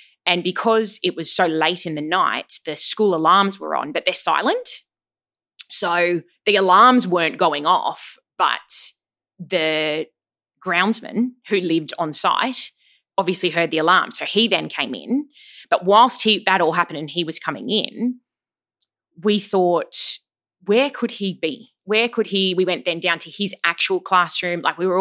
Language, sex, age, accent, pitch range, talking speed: English, female, 20-39, Australian, 165-215 Hz, 170 wpm